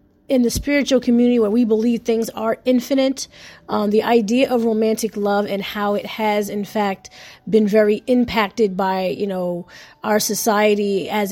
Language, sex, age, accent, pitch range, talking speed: English, female, 20-39, American, 200-240 Hz, 165 wpm